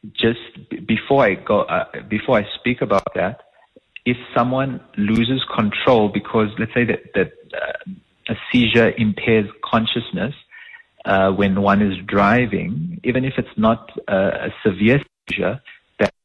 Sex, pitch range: male, 95-115 Hz